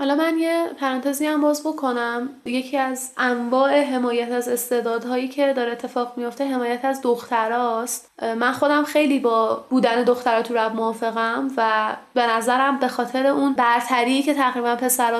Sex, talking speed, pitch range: female, 155 wpm, 245-285 Hz